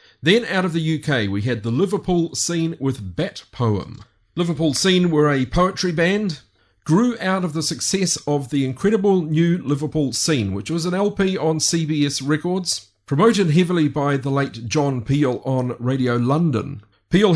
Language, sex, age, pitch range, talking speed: English, male, 40-59, 125-175 Hz, 165 wpm